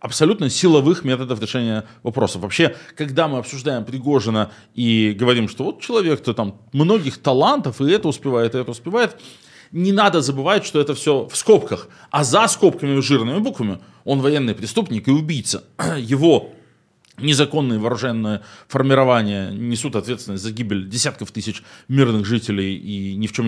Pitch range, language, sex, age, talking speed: 110-145 Hz, Russian, male, 20-39, 150 wpm